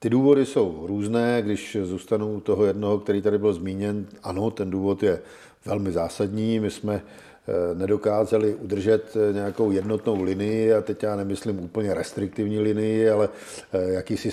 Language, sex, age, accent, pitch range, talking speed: Czech, male, 50-69, native, 100-110 Hz, 140 wpm